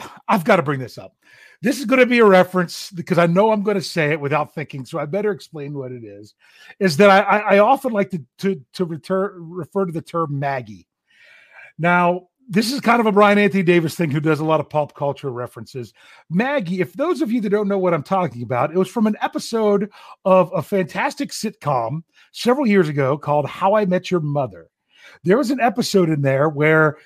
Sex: male